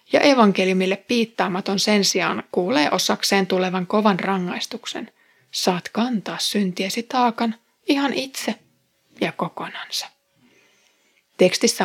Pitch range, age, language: 195-245 Hz, 30-49, Finnish